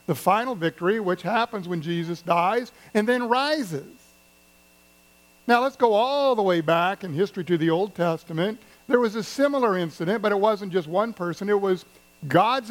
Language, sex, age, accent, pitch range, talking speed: English, male, 50-69, American, 165-235 Hz, 180 wpm